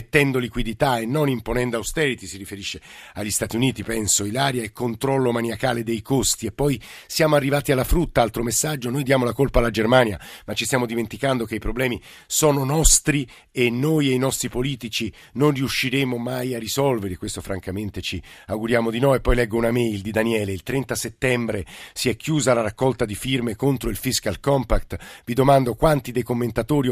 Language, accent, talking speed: Italian, native, 185 wpm